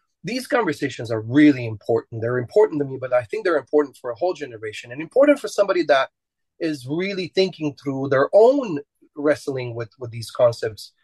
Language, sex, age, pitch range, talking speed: English, male, 30-49, 140-205 Hz, 185 wpm